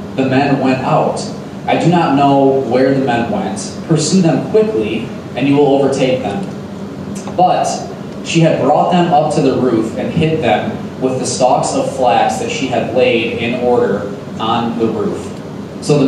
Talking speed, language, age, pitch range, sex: 180 wpm, English, 20-39, 125-155 Hz, male